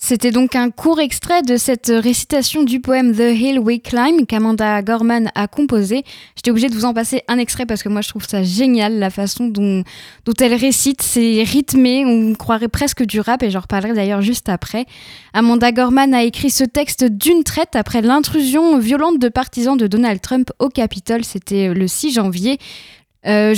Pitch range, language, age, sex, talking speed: 220-265 Hz, French, 10-29, female, 190 wpm